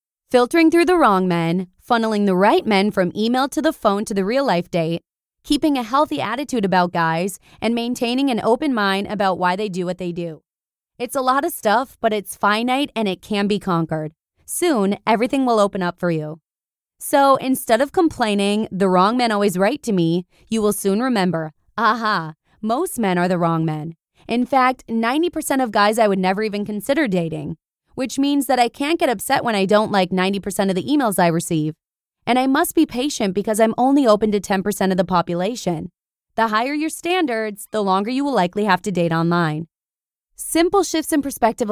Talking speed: 200 wpm